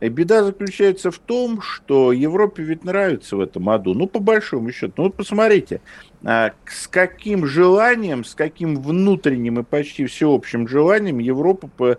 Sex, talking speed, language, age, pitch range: male, 140 wpm, Russian, 50-69, 125-165 Hz